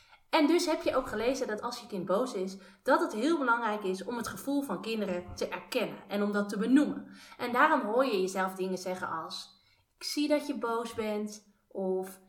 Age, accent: 30-49, Dutch